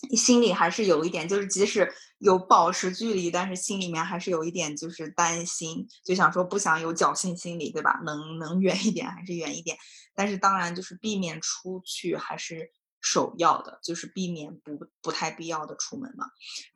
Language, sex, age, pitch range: Chinese, female, 20-39, 165-200 Hz